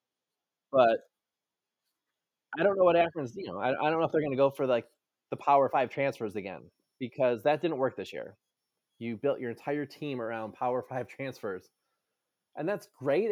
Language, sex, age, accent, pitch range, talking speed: English, male, 20-39, American, 115-140 Hz, 190 wpm